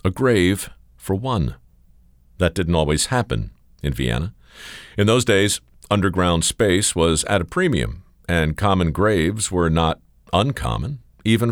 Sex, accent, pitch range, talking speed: male, American, 85-115 Hz, 135 wpm